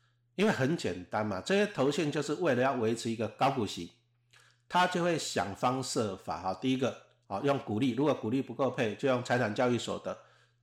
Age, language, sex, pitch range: 50-69, Chinese, male, 110-145 Hz